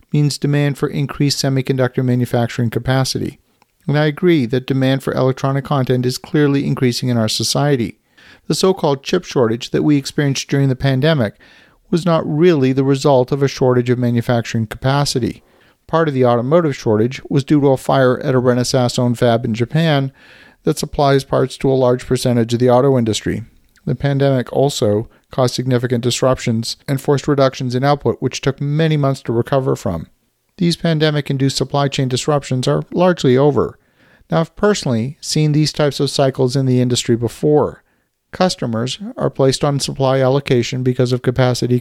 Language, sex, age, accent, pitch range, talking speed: English, male, 50-69, American, 125-145 Hz, 165 wpm